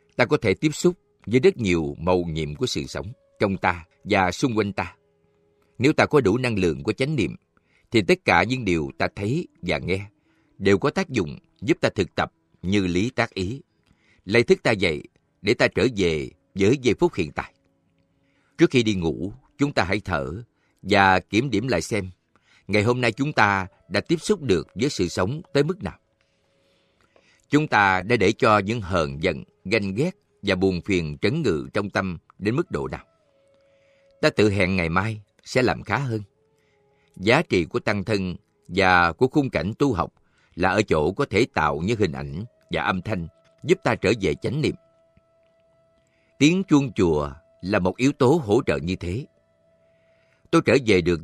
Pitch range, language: 90-145 Hz, Vietnamese